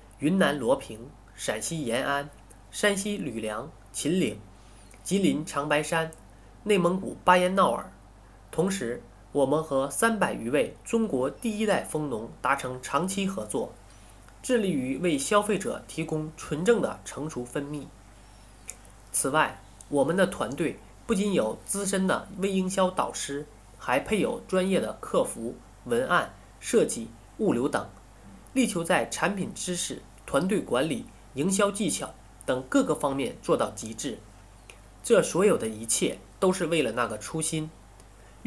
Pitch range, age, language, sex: 115-195 Hz, 20-39, Chinese, male